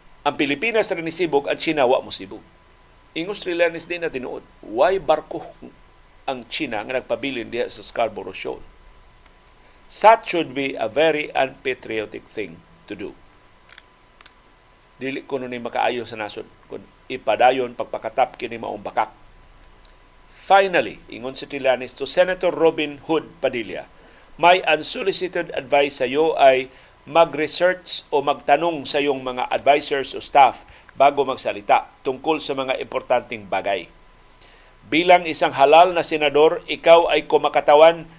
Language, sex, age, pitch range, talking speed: Filipino, male, 50-69, 140-170 Hz, 125 wpm